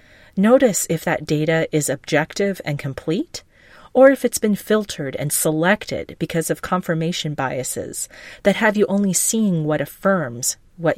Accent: American